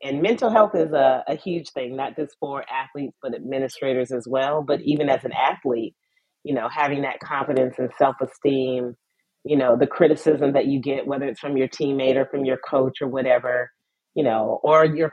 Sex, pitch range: female, 130-155 Hz